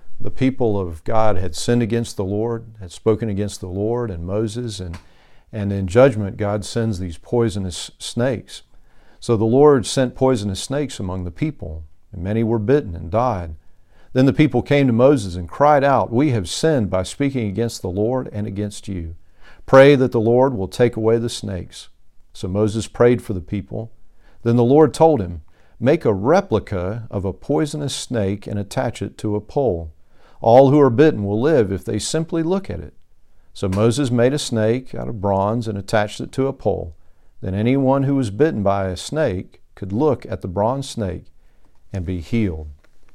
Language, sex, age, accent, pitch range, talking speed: English, male, 50-69, American, 95-120 Hz, 190 wpm